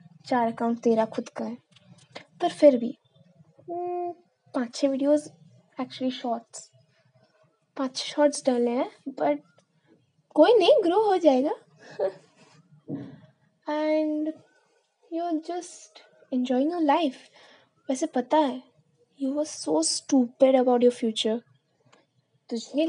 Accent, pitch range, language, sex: native, 245-340 Hz, Hindi, female